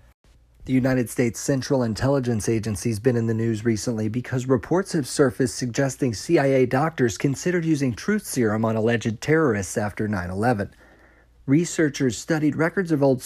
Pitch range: 115-150 Hz